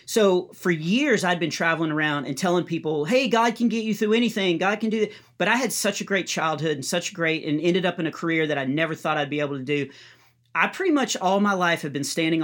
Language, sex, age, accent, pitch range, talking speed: English, male, 40-59, American, 150-185 Hz, 265 wpm